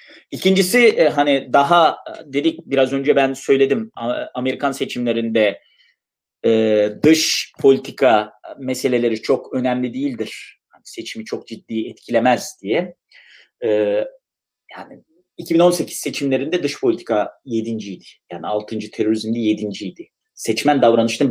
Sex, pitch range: male, 125-200 Hz